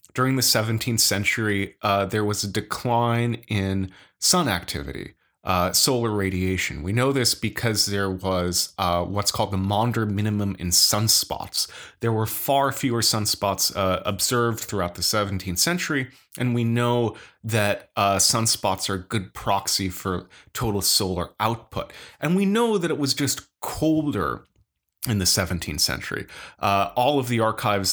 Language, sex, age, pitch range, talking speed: English, male, 30-49, 95-115 Hz, 155 wpm